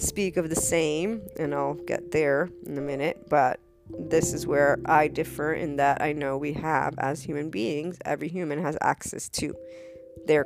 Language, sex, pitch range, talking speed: English, female, 140-170 Hz, 185 wpm